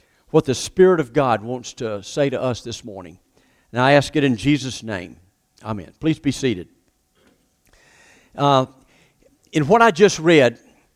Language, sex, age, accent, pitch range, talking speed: English, male, 50-69, American, 140-195 Hz, 160 wpm